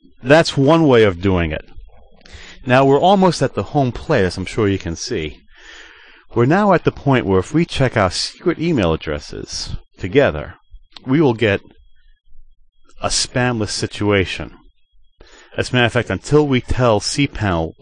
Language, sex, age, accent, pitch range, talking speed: English, male, 40-59, American, 95-135 Hz, 160 wpm